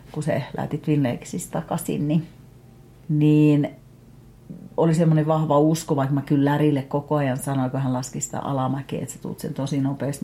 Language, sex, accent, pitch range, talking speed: Finnish, female, native, 135-165 Hz, 165 wpm